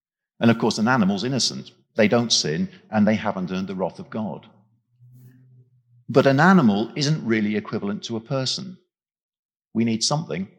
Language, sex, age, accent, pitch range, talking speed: English, male, 50-69, British, 115-185 Hz, 165 wpm